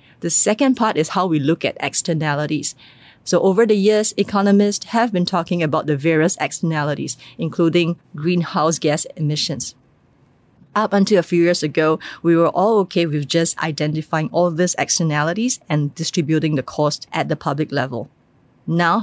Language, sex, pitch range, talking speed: English, female, 150-185 Hz, 160 wpm